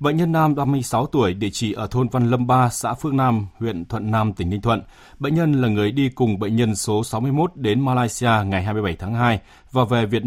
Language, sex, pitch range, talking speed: Vietnamese, male, 105-135 Hz, 235 wpm